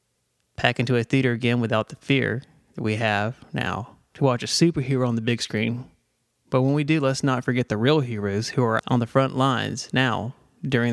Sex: male